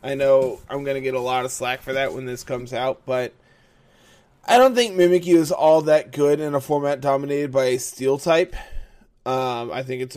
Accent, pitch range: American, 125-145 Hz